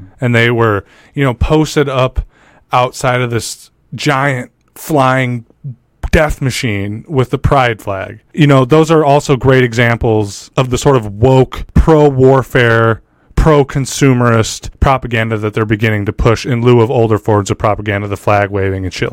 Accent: American